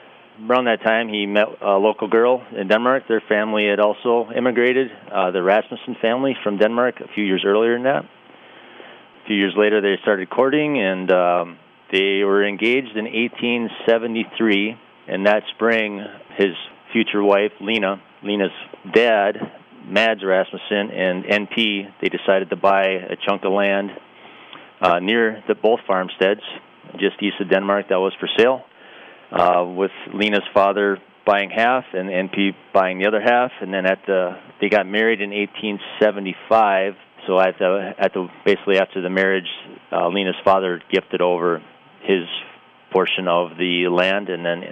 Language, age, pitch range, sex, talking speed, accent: English, 40-59, 90-110 Hz, male, 155 wpm, American